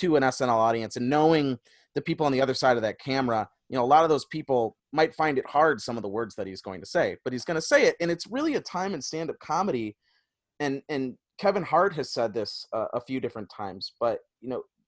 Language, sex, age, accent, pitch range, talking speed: English, male, 30-49, American, 125-180 Hz, 255 wpm